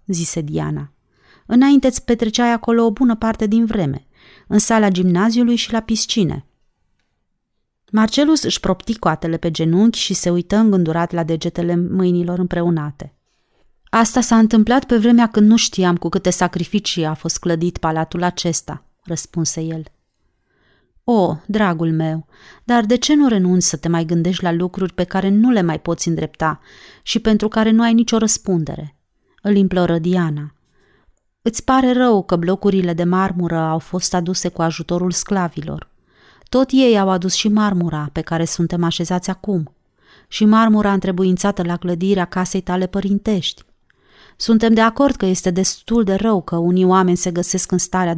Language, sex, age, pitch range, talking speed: Romanian, female, 30-49, 170-215 Hz, 155 wpm